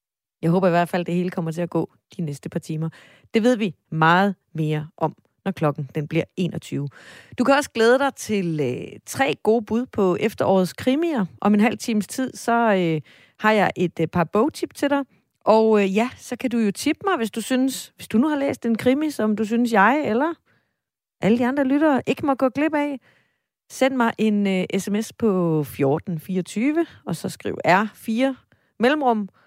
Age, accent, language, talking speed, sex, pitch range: 30-49, native, Danish, 205 wpm, female, 165-230 Hz